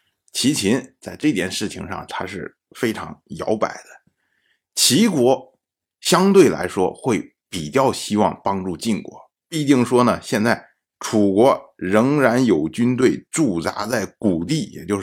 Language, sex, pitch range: Chinese, male, 125-195 Hz